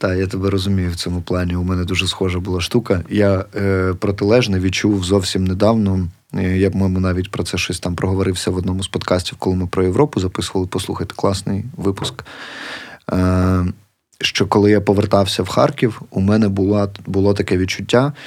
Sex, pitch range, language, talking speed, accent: male, 90-100 Hz, Ukrainian, 175 wpm, native